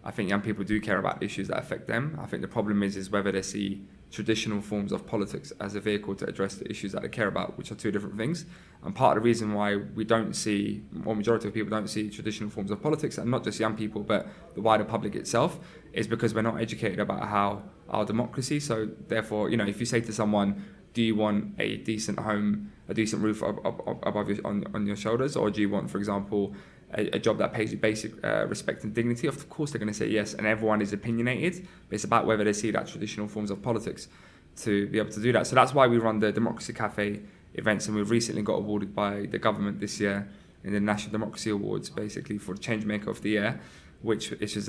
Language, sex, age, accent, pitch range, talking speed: English, male, 20-39, British, 105-115 Hz, 240 wpm